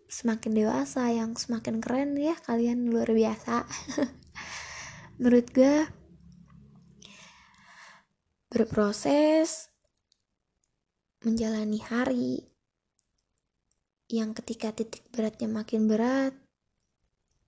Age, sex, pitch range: 20-39, female, 225-255 Hz